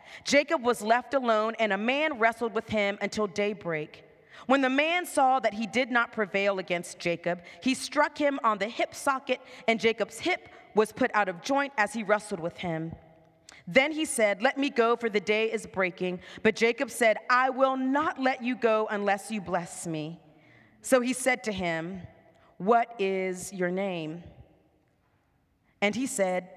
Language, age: English, 40-59